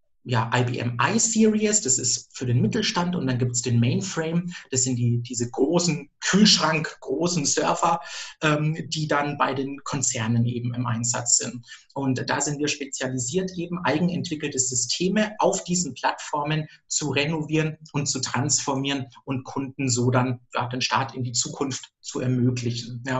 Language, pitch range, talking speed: German, 125-150 Hz, 160 wpm